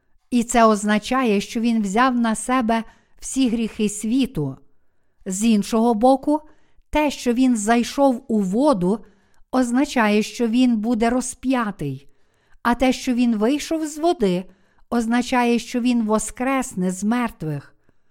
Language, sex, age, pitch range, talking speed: Ukrainian, female, 50-69, 205-255 Hz, 125 wpm